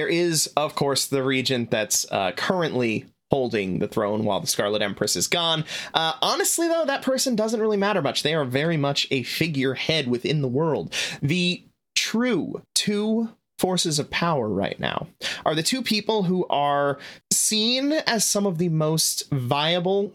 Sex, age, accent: male, 30-49, American